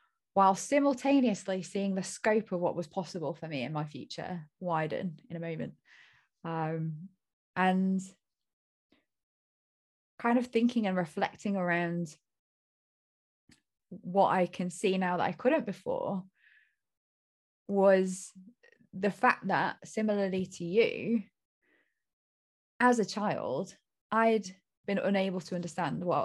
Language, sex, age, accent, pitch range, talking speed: English, female, 20-39, British, 170-200 Hz, 115 wpm